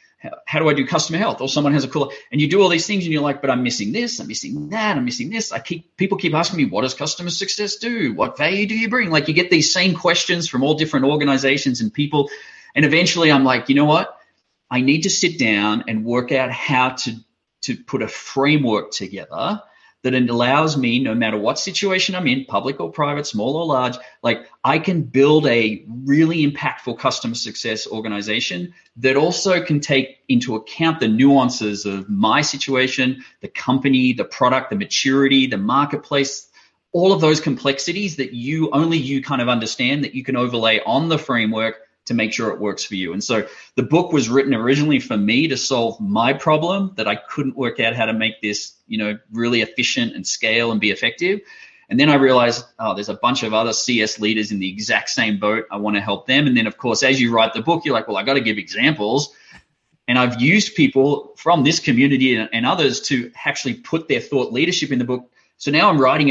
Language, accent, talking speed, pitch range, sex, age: English, Australian, 220 wpm, 120-160 Hz, male, 30-49